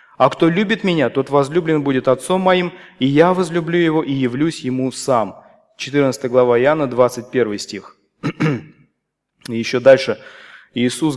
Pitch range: 130-165 Hz